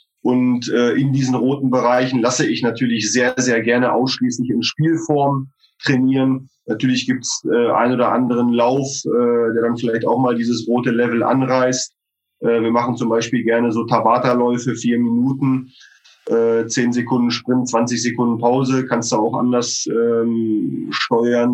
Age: 30-49